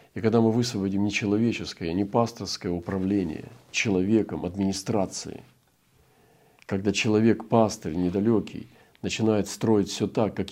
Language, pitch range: Russian, 90-110 Hz